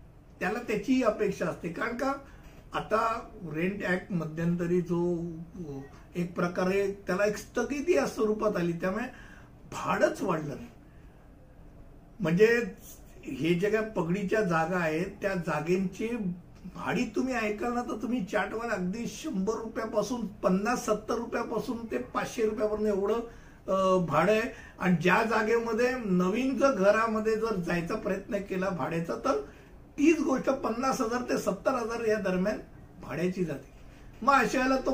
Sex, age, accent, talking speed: male, 60-79, native, 85 wpm